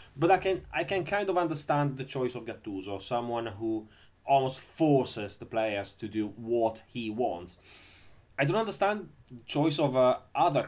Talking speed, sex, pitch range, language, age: 175 wpm, male, 110-160 Hz, English, 30-49